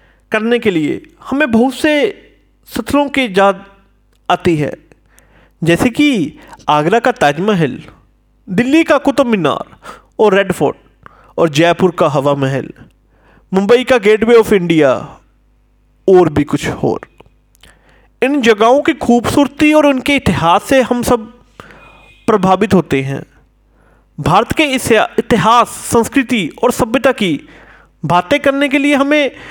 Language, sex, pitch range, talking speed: Hindi, male, 180-270 Hz, 130 wpm